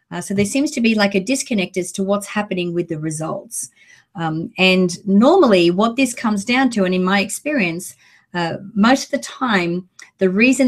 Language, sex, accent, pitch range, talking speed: English, female, Australian, 180-220 Hz, 195 wpm